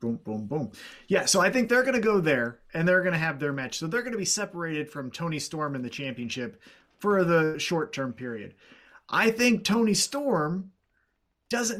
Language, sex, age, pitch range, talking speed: English, male, 30-49, 150-210 Hz, 205 wpm